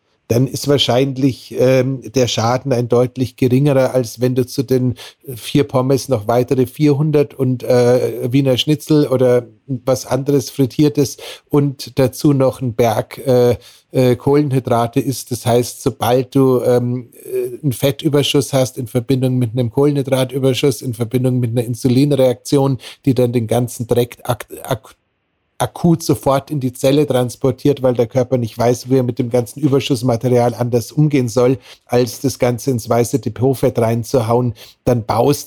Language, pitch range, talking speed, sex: German, 120-135 Hz, 150 wpm, male